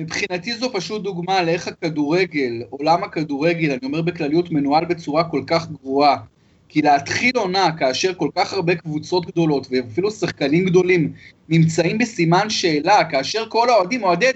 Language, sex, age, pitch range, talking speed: Hebrew, male, 30-49, 175-255 Hz, 145 wpm